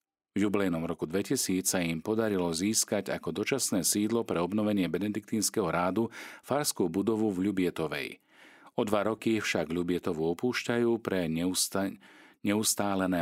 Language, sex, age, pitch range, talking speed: Slovak, male, 40-59, 85-105 Hz, 125 wpm